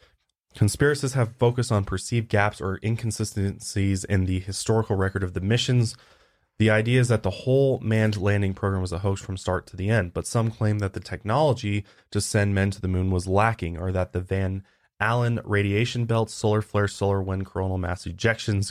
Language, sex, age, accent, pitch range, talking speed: English, male, 20-39, American, 95-110 Hz, 190 wpm